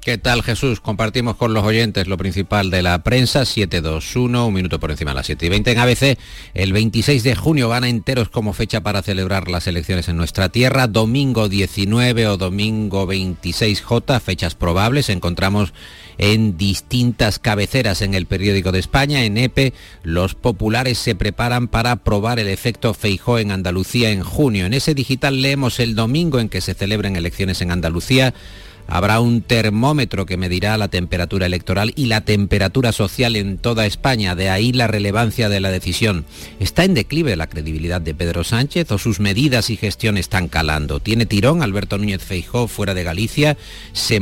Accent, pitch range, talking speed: Spanish, 95-120 Hz, 175 wpm